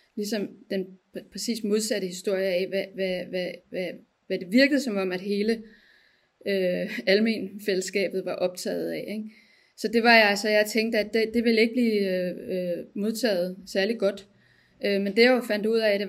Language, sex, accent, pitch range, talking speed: Danish, female, native, 195-230 Hz, 185 wpm